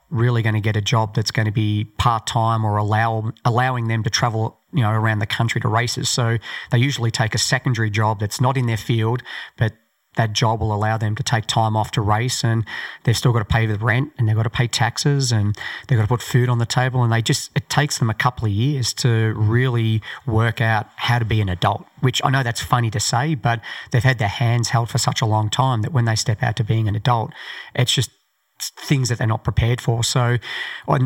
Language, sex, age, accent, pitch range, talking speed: English, male, 30-49, Australian, 110-130 Hz, 255 wpm